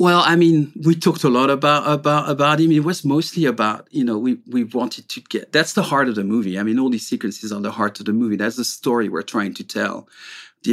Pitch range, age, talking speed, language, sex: 110-130 Hz, 40-59, 265 wpm, English, male